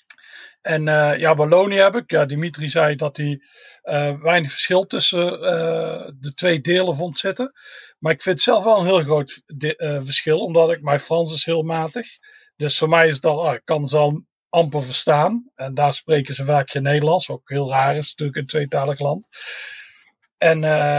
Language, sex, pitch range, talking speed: Dutch, male, 150-175 Hz, 195 wpm